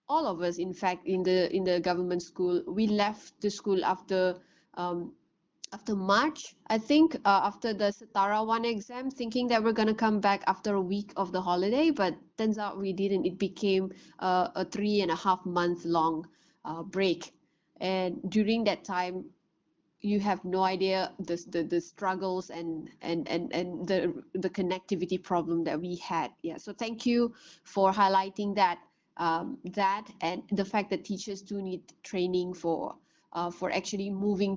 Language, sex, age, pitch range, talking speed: English, female, 20-39, 180-220 Hz, 175 wpm